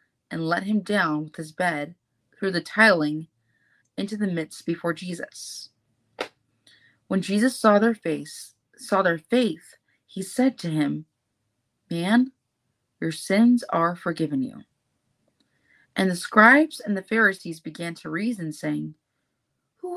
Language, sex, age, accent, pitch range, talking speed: English, female, 30-49, American, 160-230 Hz, 130 wpm